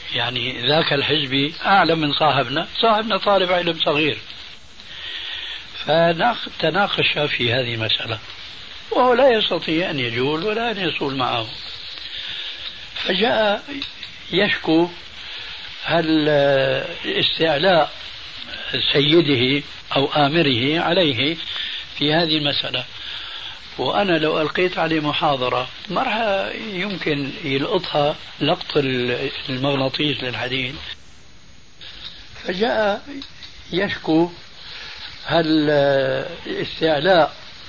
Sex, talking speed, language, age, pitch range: male, 80 wpm, Arabic, 60-79, 135-170 Hz